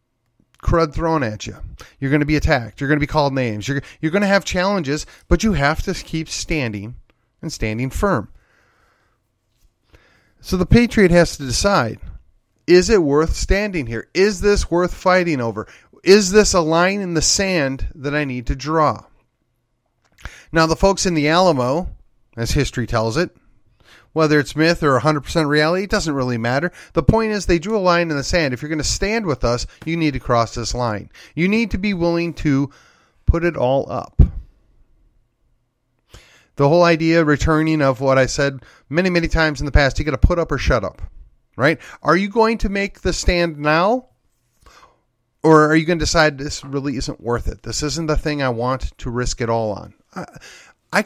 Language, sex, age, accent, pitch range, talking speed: English, male, 30-49, American, 120-175 Hz, 195 wpm